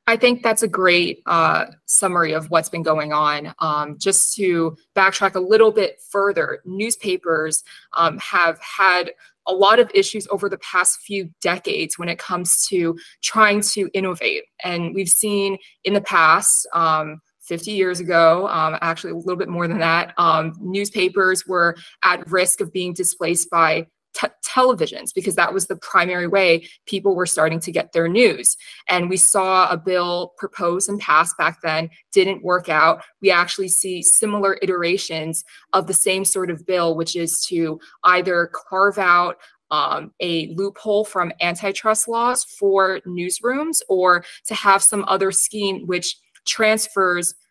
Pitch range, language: 170-200 Hz, English